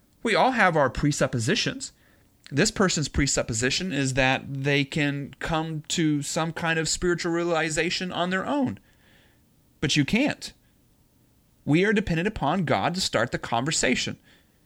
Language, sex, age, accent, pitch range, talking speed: English, male, 30-49, American, 125-160 Hz, 140 wpm